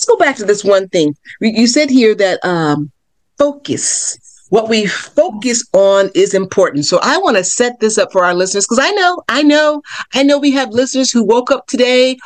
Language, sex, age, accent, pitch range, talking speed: English, female, 40-59, American, 175-245 Hz, 210 wpm